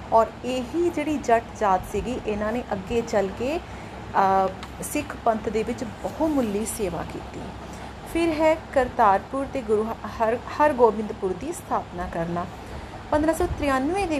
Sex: female